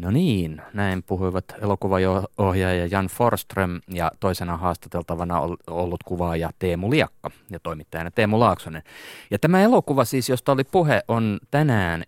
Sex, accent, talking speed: male, native, 135 wpm